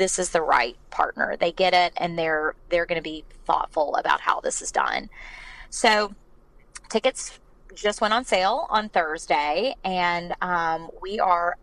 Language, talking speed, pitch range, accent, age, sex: English, 165 wpm, 160-195 Hz, American, 20-39, female